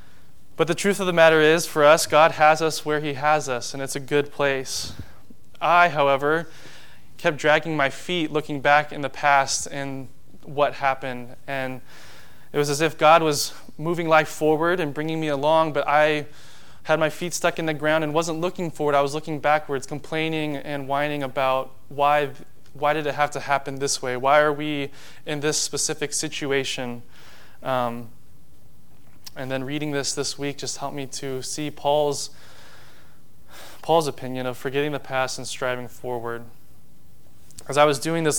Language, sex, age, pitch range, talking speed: English, male, 20-39, 135-155 Hz, 175 wpm